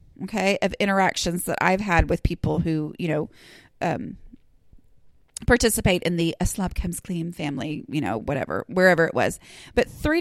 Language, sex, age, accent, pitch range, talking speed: English, female, 30-49, American, 170-210 Hz, 165 wpm